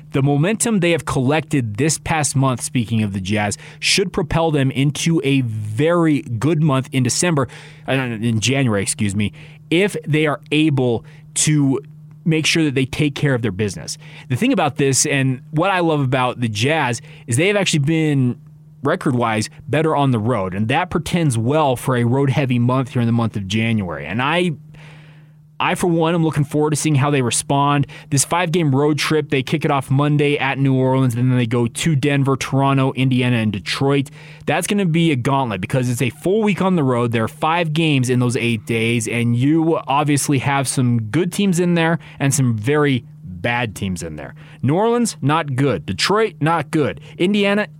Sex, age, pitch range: male, 20-39, 125-155 Hz